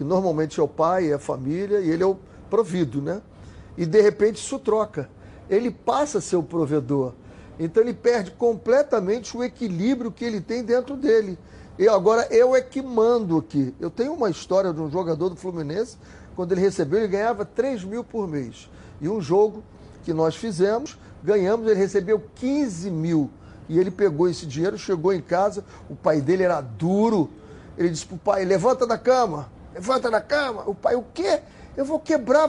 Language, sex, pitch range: Portuguese, male, 170-235 Hz